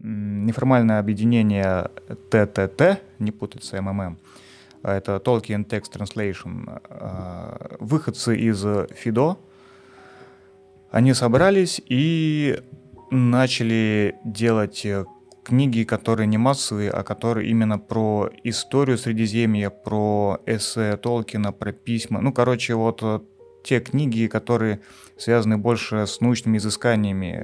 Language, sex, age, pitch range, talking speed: Russian, male, 30-49, 100-120 Hz, 95 wpm